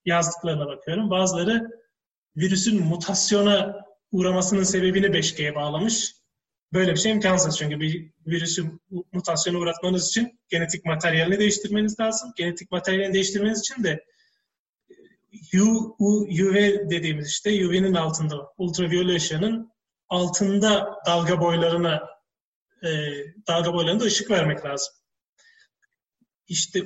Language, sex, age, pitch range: Turkish, male, 30-49, 170-215 Hz